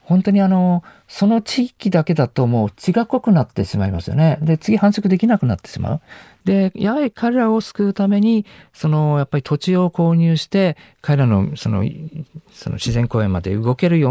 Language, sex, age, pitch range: Japanese, male, 50-69, 115-185 Hz